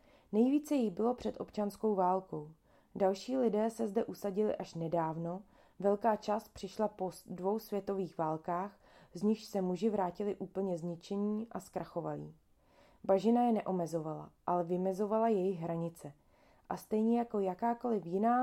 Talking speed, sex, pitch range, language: 135 wpm, female, 175-215 Hz, Czech